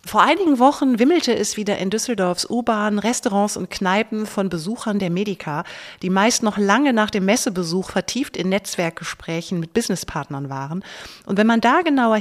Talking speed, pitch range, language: 170 wpm, 175-225 Hz, German